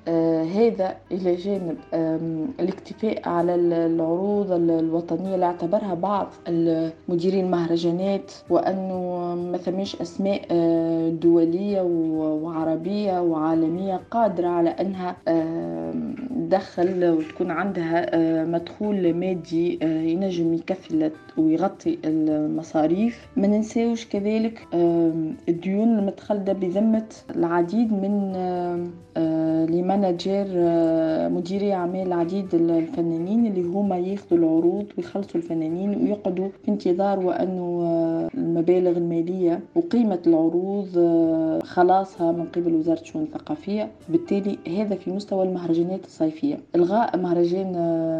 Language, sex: Arabic, female